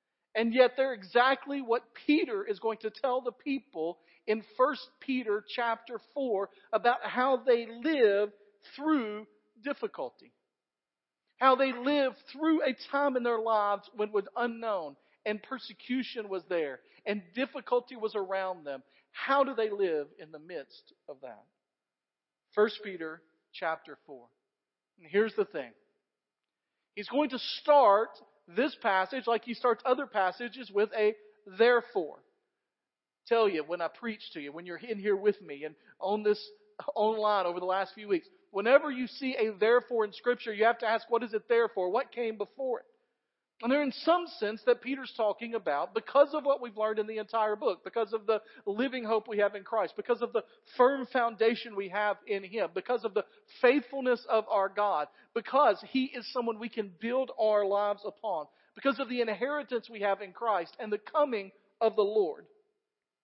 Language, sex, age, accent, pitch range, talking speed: English, male, 50-69, American, 205-260 Hz, 175 wpm